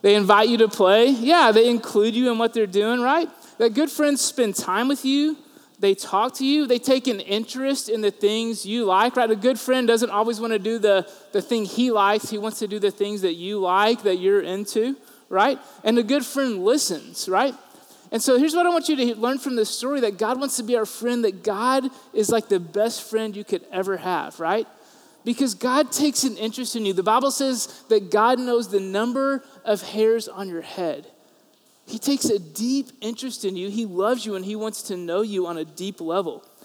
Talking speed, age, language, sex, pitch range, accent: 230 wpm, 20-39, English, male, 205-260 Hz, American